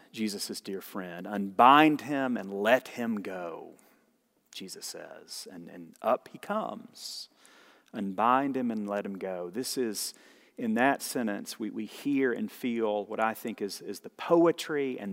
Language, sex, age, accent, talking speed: English, male, 40-59, American, 160 wpm